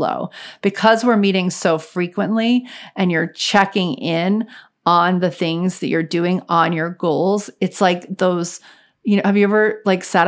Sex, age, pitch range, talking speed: female, 40-59, 170-210 Hz, 165 wpm